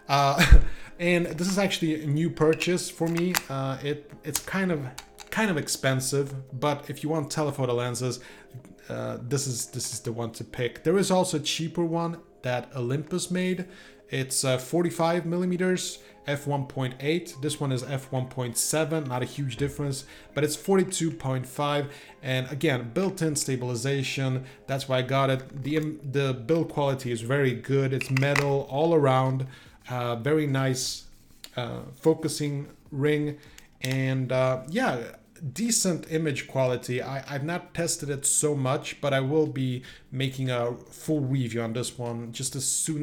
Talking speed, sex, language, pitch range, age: 155 wpm, male, English, 125-155 Hz, 30-49